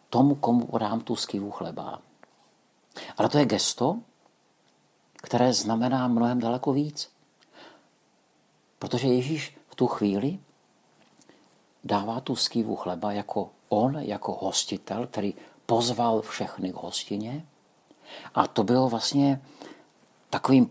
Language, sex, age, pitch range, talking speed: Czech, male, 50-69, 110-135 Hz, 110 wpm